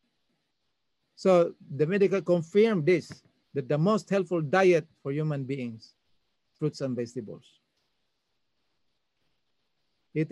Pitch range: 130-180 Hz